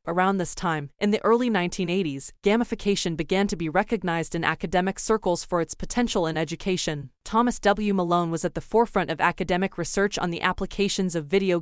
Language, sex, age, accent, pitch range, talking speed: English, female, 20-39, American, 170-200 Hz, 180 wpm